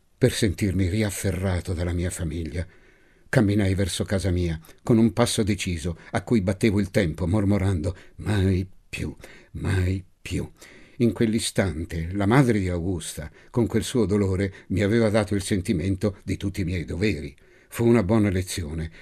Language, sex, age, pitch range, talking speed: Italian, male, 60-79, 85-105 Hz, 150 wpm